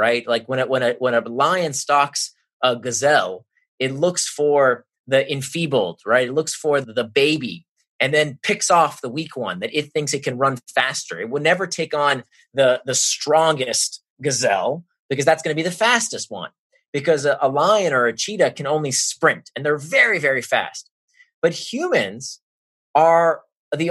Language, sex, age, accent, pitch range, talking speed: English, male, 30-49, American, 135-200 Hz, 185 wpm